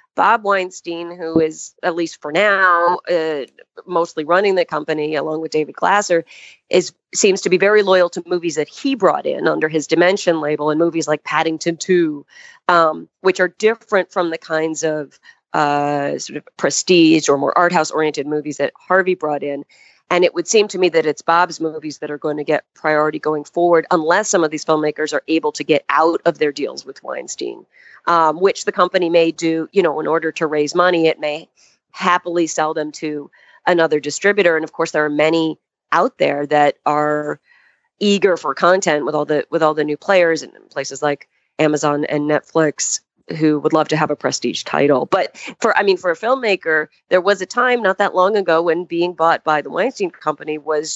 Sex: female